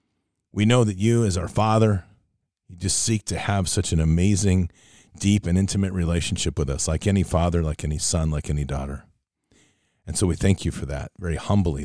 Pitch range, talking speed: 85-105 Hz, 190 wpm